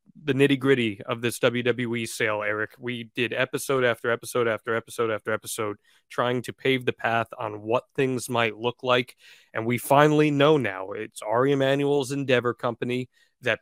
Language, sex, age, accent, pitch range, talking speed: English, male, 20-39, American, 115-140 Hz, 165 wpm